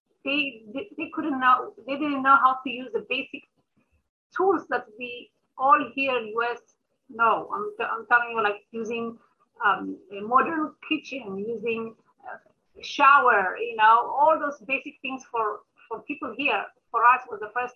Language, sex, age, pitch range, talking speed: English, female, 30-49, 225-310 Hz, 170 wpm